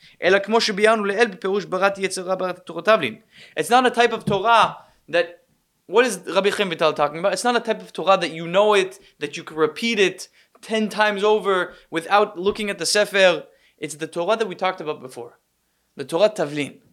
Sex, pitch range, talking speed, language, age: male, 160-220 Hz, 170 wpm, English, 20-39